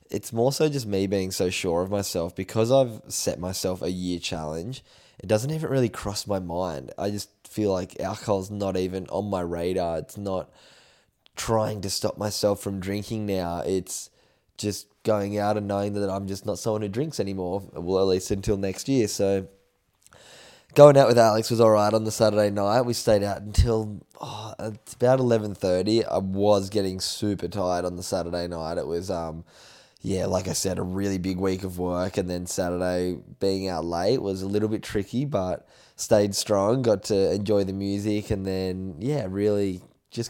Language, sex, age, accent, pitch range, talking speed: English, male, 10-29, Australian, 95-105 Hz, 190 wpm